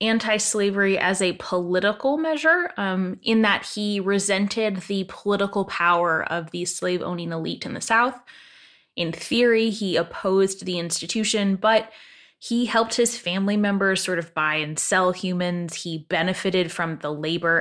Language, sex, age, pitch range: English, female, 10-29, 170-210 Hz